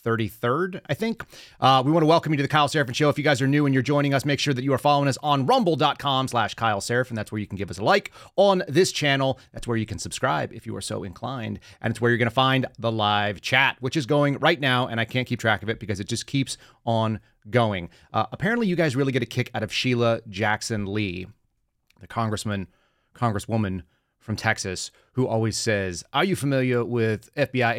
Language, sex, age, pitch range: English, male, 30-49, 105-140 Hz